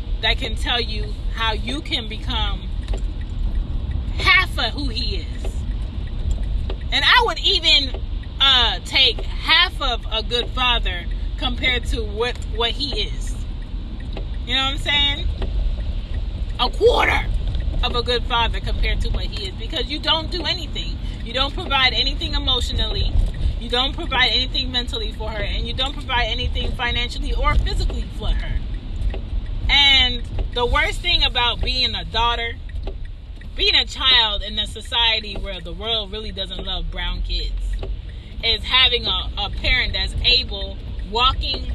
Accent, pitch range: American, 70-90 Hz